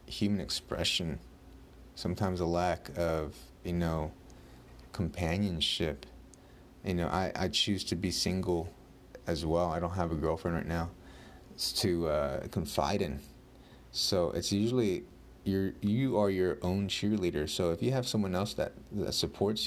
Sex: male